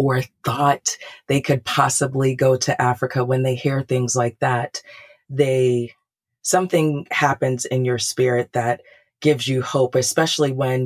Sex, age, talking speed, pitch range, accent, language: female, 30-49, 145 wpm, 125-150 Hz, American, English